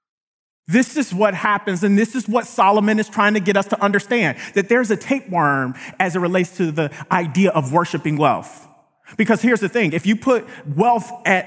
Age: 30-49